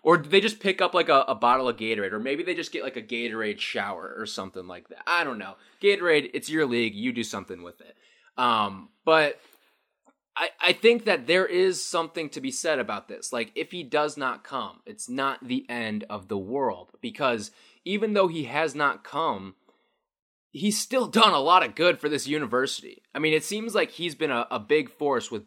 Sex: male